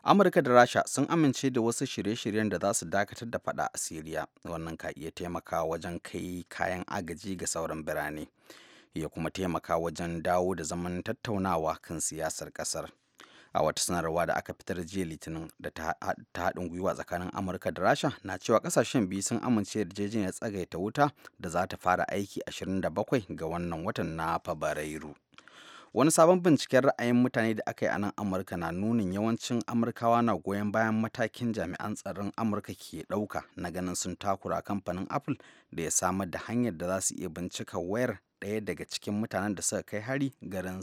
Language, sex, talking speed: English, male, 175 wpm